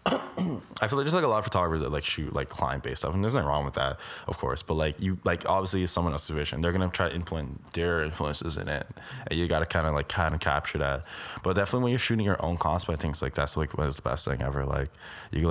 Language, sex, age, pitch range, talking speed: English, male, 20-39, 75-95 Hz, 290 wpm